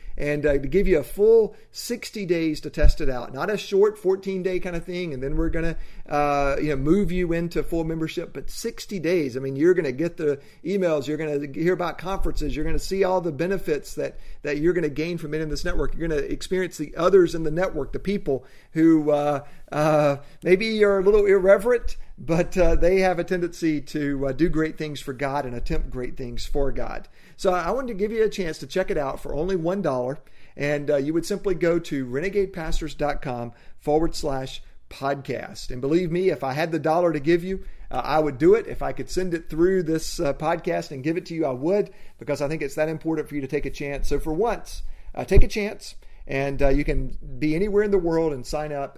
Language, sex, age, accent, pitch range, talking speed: English, male, 40-59, American, 145-185 Hz, 235 wpm